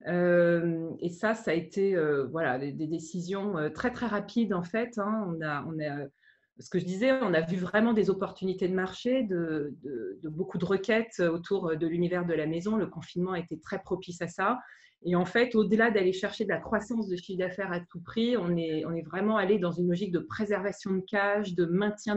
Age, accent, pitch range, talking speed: 30-49, French, 165-210 Hz, 215 wpm